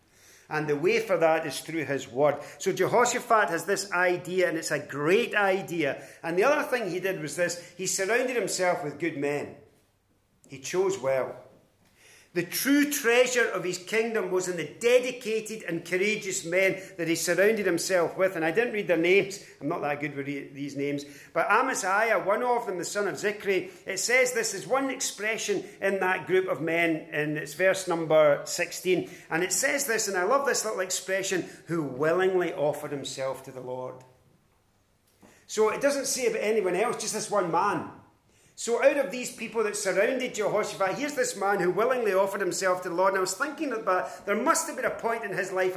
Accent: British